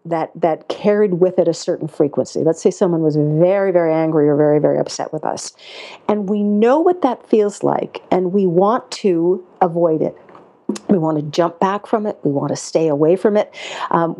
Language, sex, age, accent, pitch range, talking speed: English, female, 50-69, American, 170-215 Hz, 205 wpm